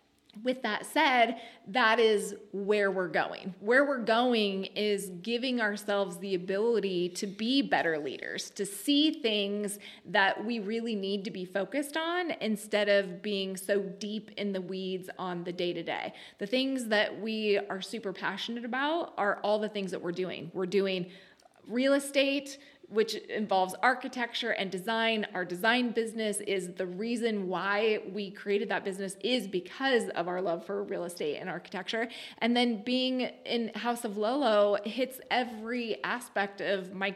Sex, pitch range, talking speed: female, 195-230 Hz, 160 wpm